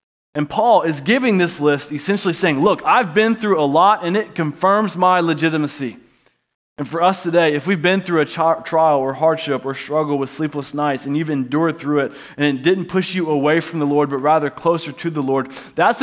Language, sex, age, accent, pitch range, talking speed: English, male, 20-39, American, 130-165 Hz, 215 wpm